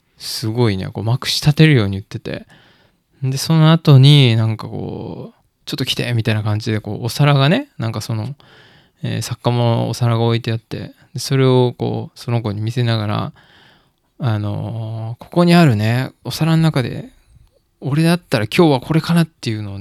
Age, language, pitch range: 20-39, Japanese, 110-150 Hz